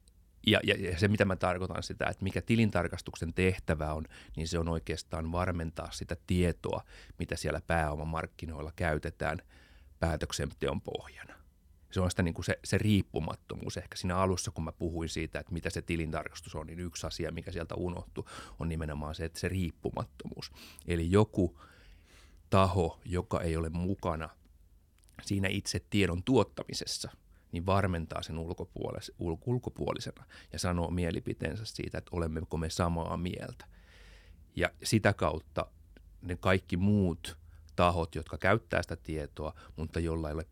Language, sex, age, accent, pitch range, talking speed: Finnish, male, 30-49, native, 80-90 Hz, 145 wpm